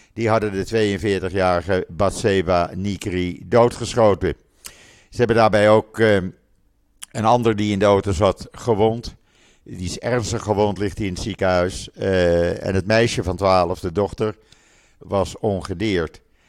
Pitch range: 95-120 Hz